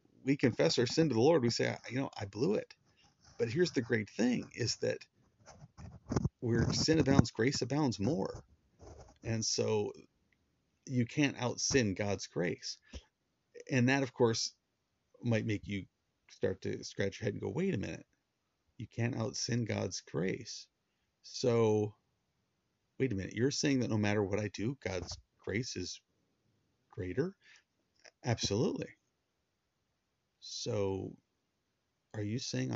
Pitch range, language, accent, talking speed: 100-135 Hz, English, American, 145 wpm